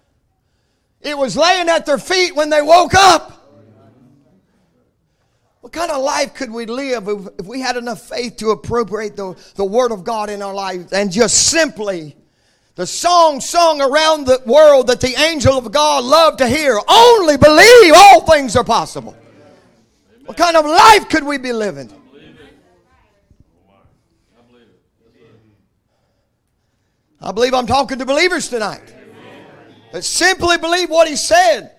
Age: 40-59